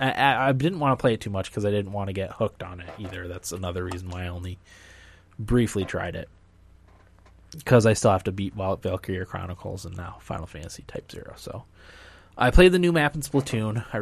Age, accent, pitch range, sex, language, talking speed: 20-39, American, 90-110 Hz, male, English, 220 wpm